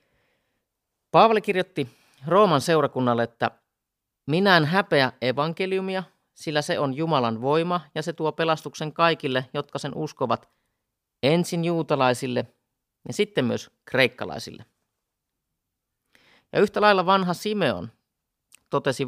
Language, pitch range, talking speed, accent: Finnish, 120-160 Hz, 105 wpm, native